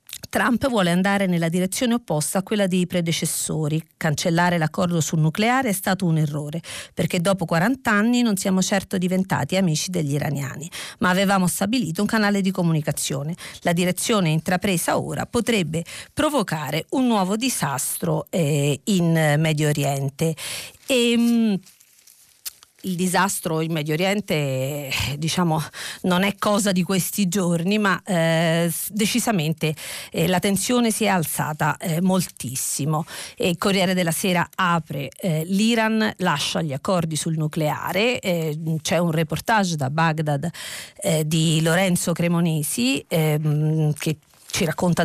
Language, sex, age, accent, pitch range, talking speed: Italian, female, 40-59, native, 155-195 Hz, 130 wpm